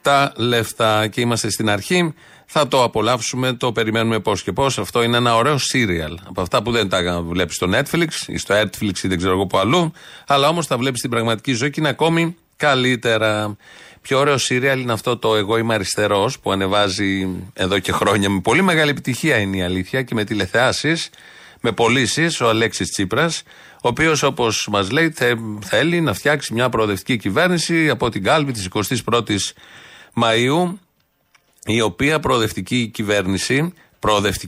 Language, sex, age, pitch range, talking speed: Greek, male, 30-49, 105-150 Hz, 230 wpm